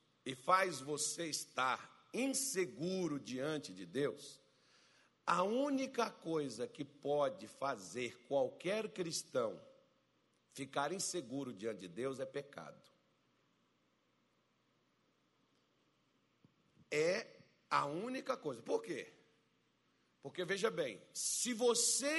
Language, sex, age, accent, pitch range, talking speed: Portuguese, male, 60-79, Brazilian, 145-240 Hz, 90 wpm